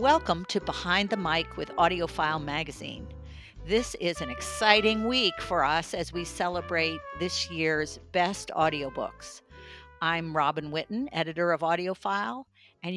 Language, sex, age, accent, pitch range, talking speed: English, female, 50-69, American, 155-195 Hz, 135 wpm